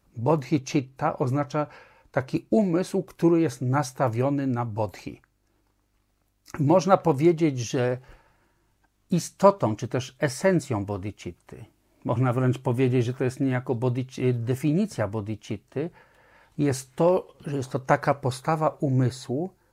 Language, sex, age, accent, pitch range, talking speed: Polish, male, 50-69, native, 125-155 Hz, 110 wpm